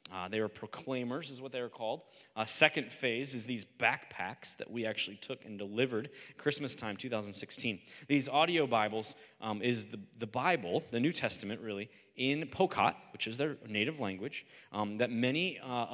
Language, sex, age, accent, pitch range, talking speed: English, male, 30-49, American, 110-130 Hz, 175 wpm